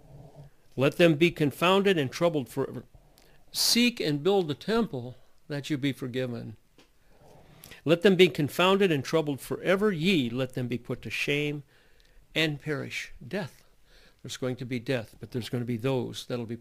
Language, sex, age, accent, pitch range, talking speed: English, male, 60-79, American, 125-160 Hz, 165 wpm